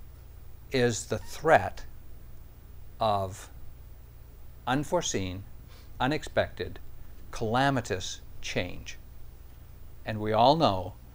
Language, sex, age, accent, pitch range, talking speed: English, male, 60-79, American, 95-120 Hz, 65 wpm